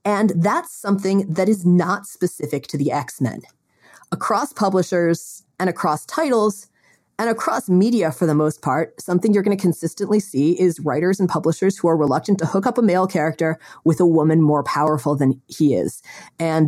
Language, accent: English, American